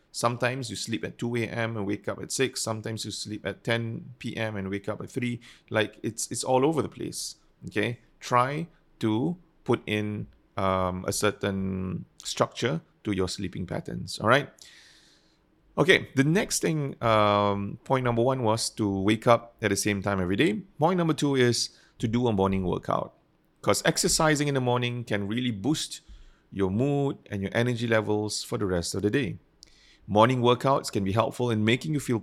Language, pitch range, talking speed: English, 105-135 Hz, 185 wpm